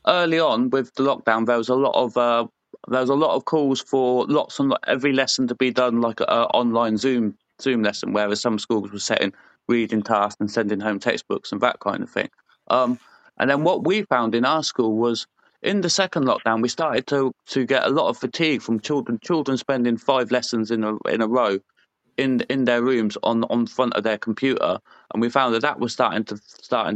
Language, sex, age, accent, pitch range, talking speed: English, male, 30-49, British, 110-130 Hz, 225 wpm